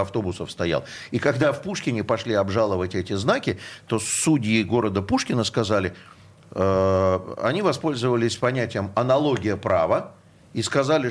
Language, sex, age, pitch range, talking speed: Russian, male, 50-69, 105-135 Hz, 125 wpm